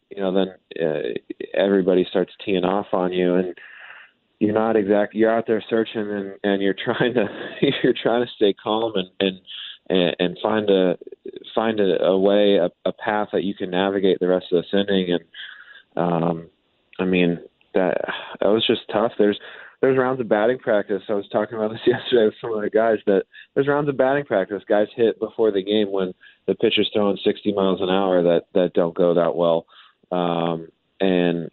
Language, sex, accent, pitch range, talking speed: English, male, American, 90-110 Hz, 195 wpm